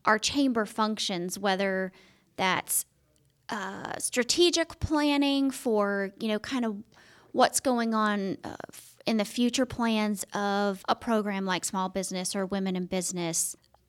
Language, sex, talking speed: English, female, 135 wpm